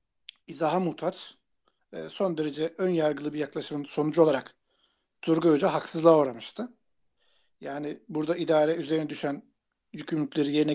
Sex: male